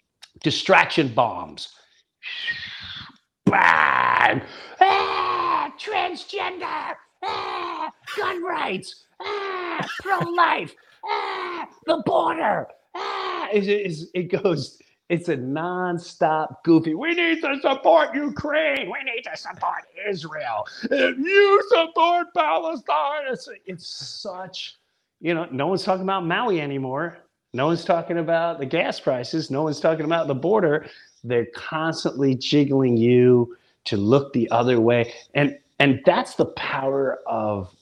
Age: 50-69